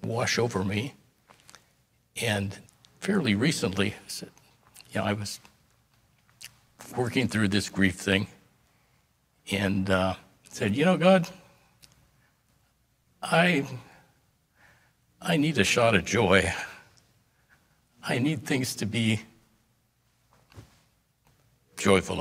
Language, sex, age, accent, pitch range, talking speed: English, male, 60-79, American, 100-120 Hz, 95 wpm